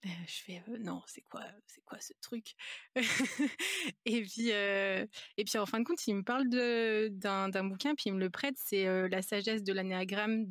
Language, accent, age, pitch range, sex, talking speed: French, French, 20-39, 200-240 Hz, female, 235 wpm